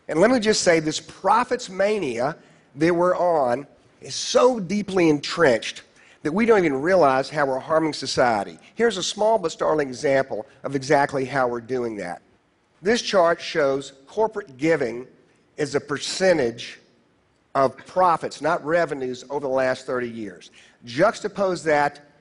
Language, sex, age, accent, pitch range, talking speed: Russian, male, 50-69, American, 125-175 Hz, 150 wpm